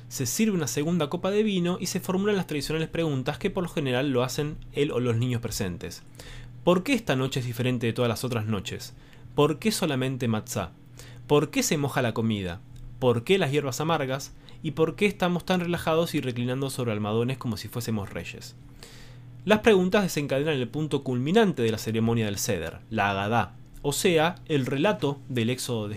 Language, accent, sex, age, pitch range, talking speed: Spanish, Argentinian, male, 20-39, 120-160 Hz, 195 wpm